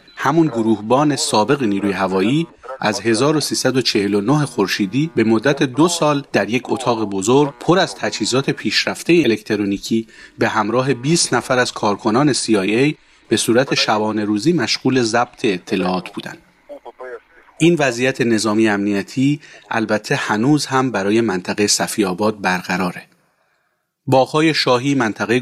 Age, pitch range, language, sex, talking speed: 30-49, 105-140 Hz, Persian, male, 120 wpm